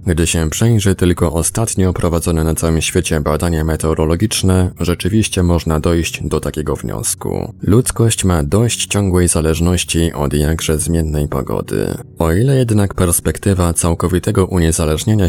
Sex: male